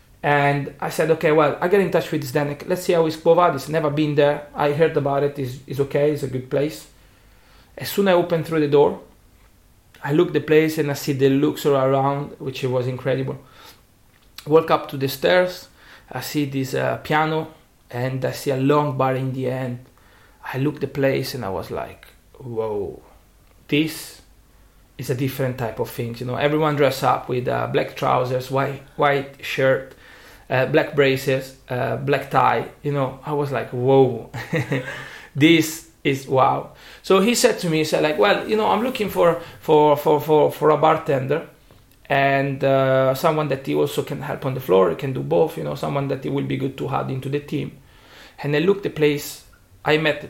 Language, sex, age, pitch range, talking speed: English, male, 30-49, 130-155 Hz, 205 wpm